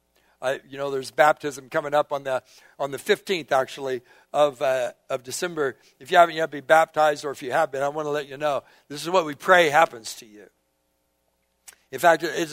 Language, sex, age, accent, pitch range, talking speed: English, male, 60-79, American, 135-175 Hz, 215 wpm